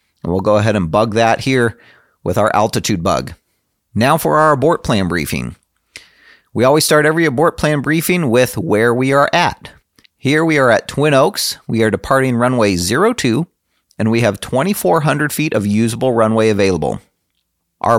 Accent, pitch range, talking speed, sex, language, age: American, 110-150 Hz, 165 wpm, male, English, 40-59